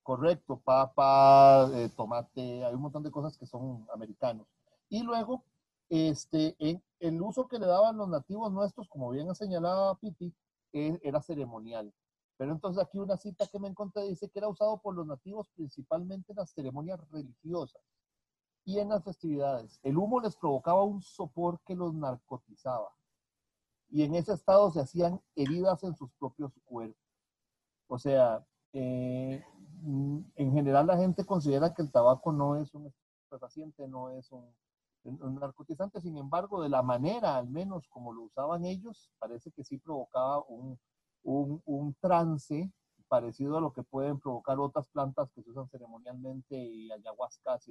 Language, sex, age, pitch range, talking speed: Spanish, male, 40-59, 130-180 Hz, 165 wpm